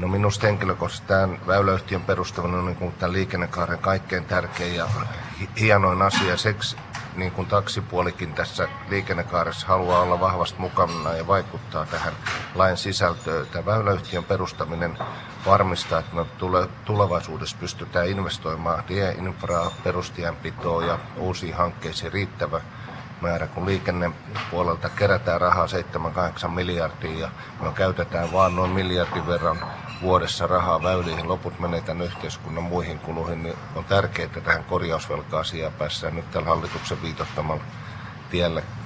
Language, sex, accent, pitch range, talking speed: Finnish, male, native, 85-100 Hz, 120 wpm